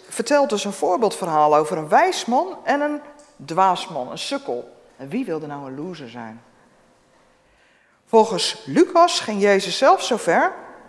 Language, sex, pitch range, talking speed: Dutch, female, 170-280 Hz, 145 wpm